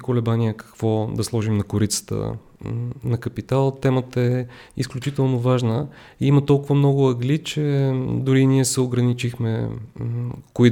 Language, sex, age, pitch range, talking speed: Bulgarian, male, 30-49, 115-135 Hz, 130 wpm